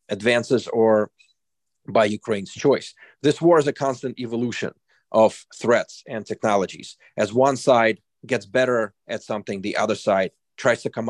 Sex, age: male, 40-59